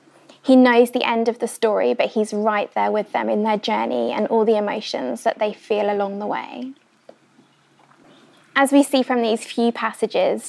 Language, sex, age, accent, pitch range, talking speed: English, female, 20-39, British, 215-255 Hz, 190 wpm